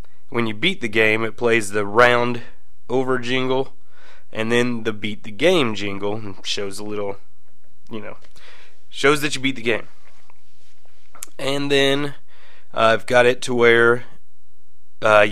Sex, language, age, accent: male, English, 20-39, American